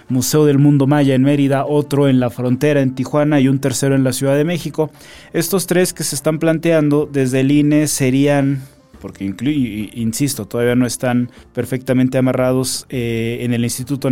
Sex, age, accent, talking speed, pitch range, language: male, 30-49, Mexican, 175 wpm, 120-145 Hz, Spanish